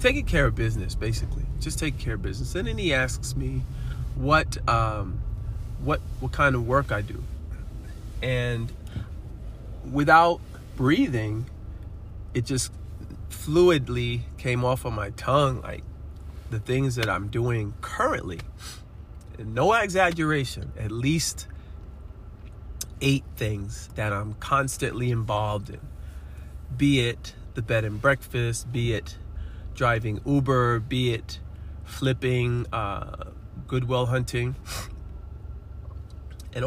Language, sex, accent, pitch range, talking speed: English, male, American, 90-125 Hz, 115 wpm